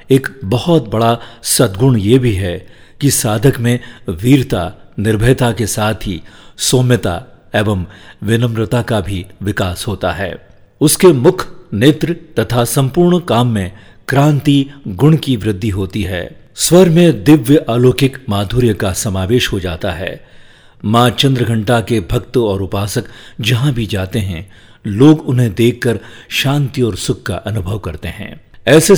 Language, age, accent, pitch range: Hindi, 50-69, native, 100-135 Hz